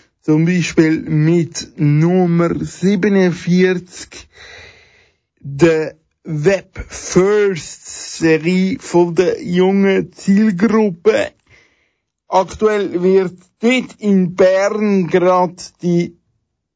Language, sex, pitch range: German, male, 175-210 Hz